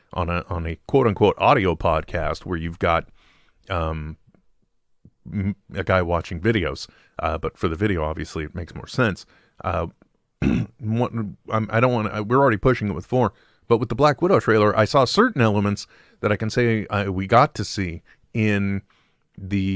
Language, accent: English, American